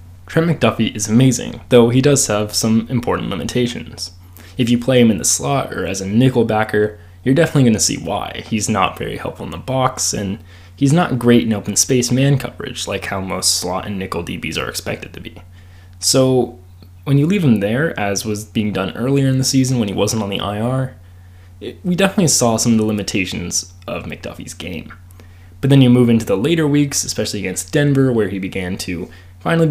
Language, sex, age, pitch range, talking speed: English, male, 20-39, 90-130 Hz, 205 wpm